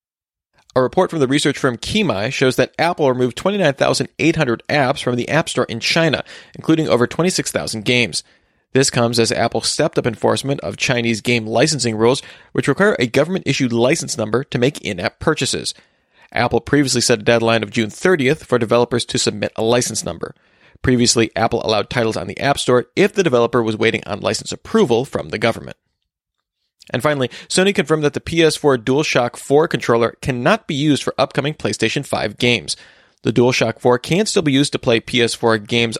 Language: English